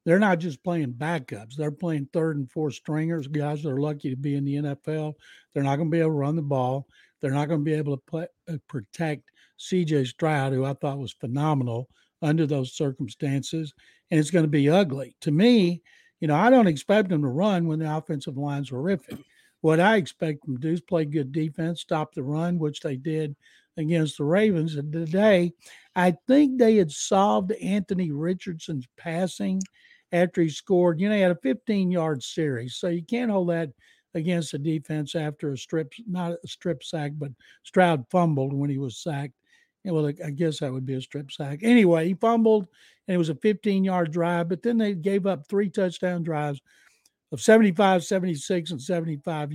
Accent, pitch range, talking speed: American, 145-180 Hz, 195 wpm